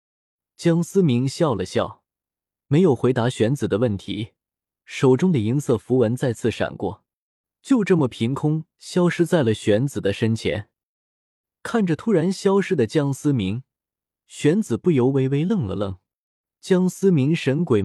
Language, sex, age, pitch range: Chinese, male, 20-39, 110-155 Hz